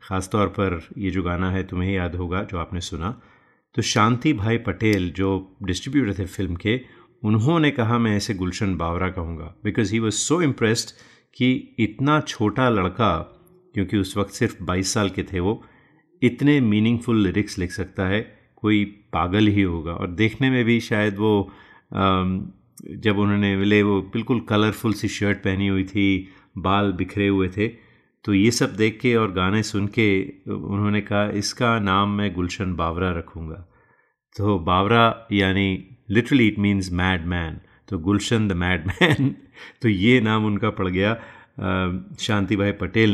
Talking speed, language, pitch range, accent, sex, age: 165 wpm, Hindi, 95-115 Hz, native, male, 30-49